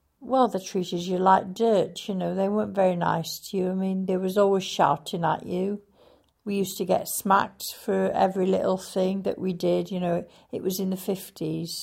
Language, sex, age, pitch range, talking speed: English, female, 60-79, 175-205 Hz, 210 wpm